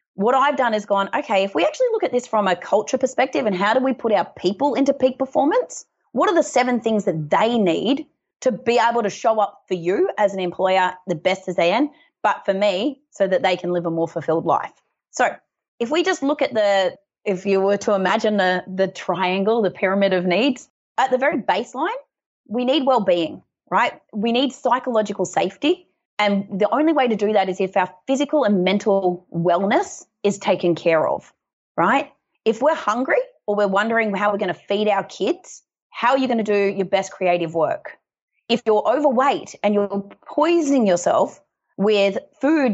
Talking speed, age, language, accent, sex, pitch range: 205 wpm, 30-49, English, Australian, female, 190-265 Hz